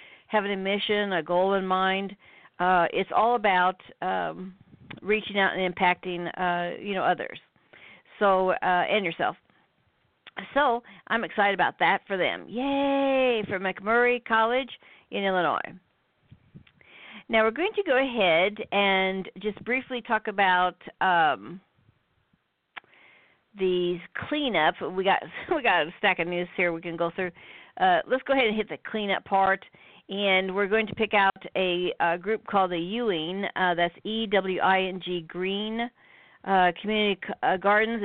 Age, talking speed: 50-69, 155 wpm